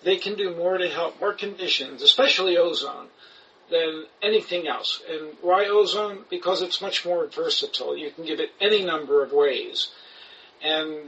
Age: 50-69